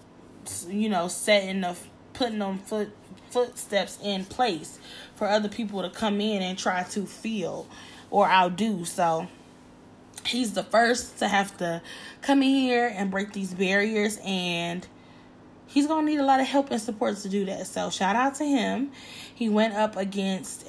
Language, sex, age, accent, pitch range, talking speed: English, female, 10-29, American, 180-215 Hz, 170 wpm